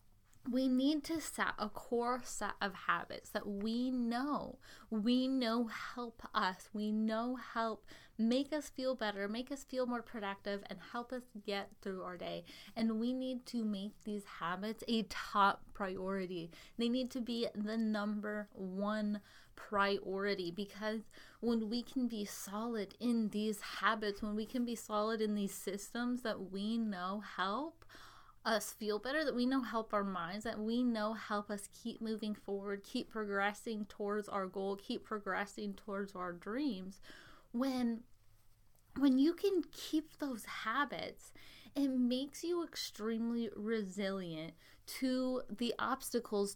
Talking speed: 150 wpm